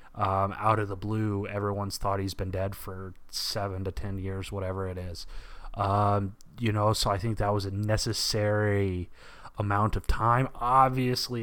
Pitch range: 100-125 Hz